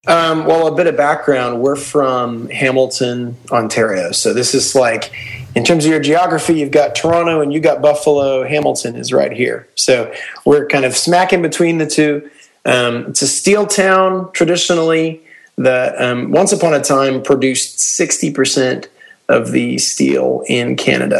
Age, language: 30-49, English